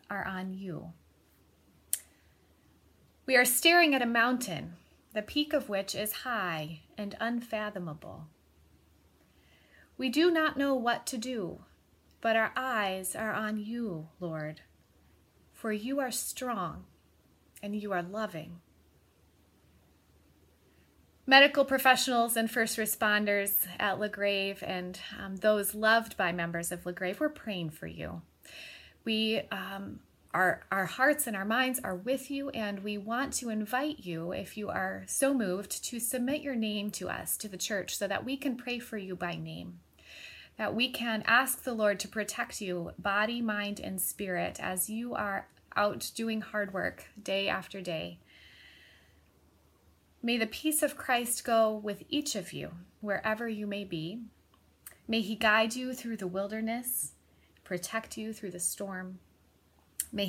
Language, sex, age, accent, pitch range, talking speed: English, female, 30-49, American, 155-230 Hz, 145 wpm